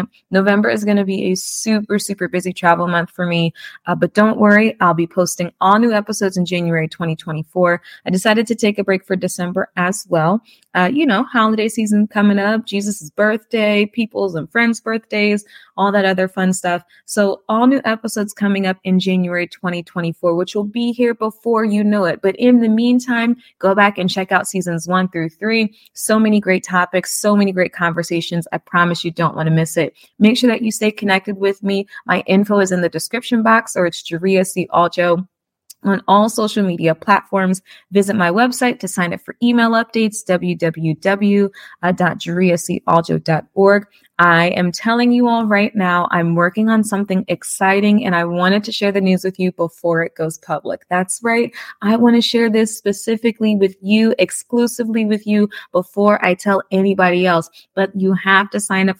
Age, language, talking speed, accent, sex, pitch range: 20-39, English, 185 wpm, American, female, 175-215 Hz